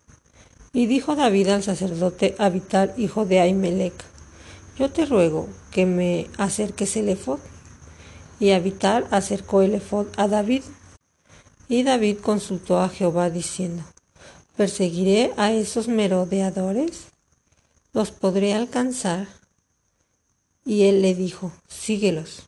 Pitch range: 175-205 Hz